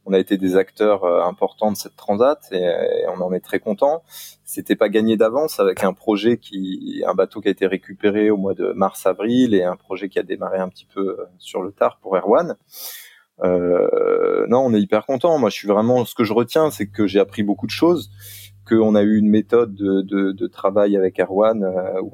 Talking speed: 220 wpm